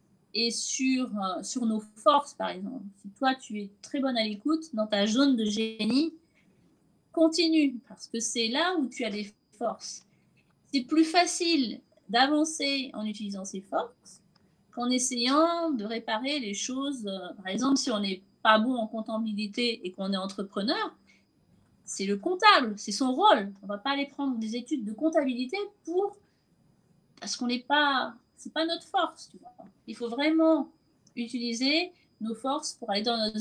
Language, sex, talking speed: French, female, 170 wpm